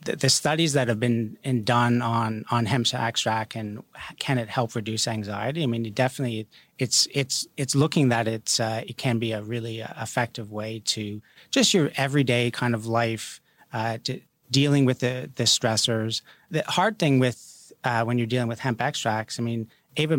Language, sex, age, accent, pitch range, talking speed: English, male, 30-49, American, 115-135 Hz, 185 wpm